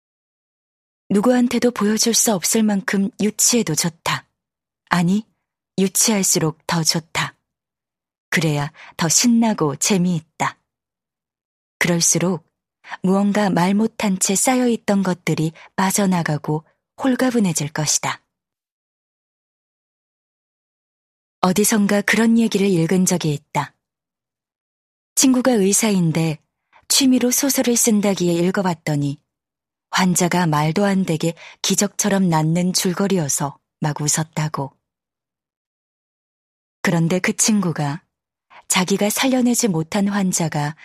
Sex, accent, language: female, native, Korean